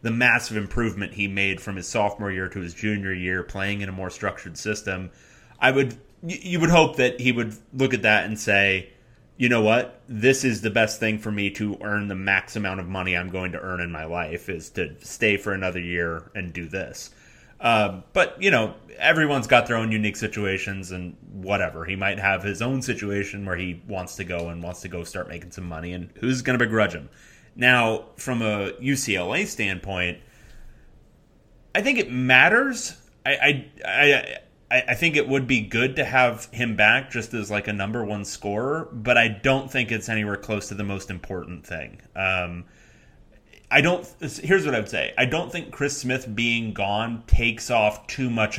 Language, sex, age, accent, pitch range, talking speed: English, male, 30-49, American, 95-120 Hz, 200 wpm